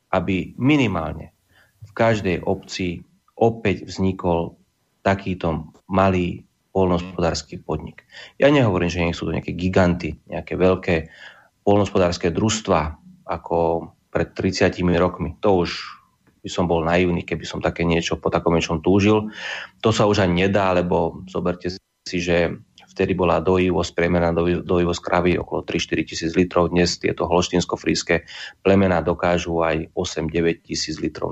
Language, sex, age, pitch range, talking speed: Slovak, male, 30-49, 85-95 Hz, 130 wpm